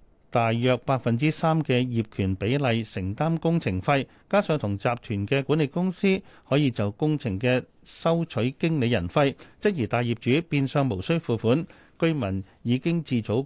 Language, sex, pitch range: Chinese, male, 110-155 Hz